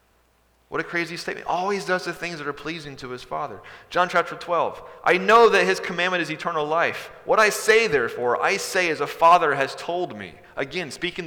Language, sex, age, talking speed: English, male, 30-49, 210 wpm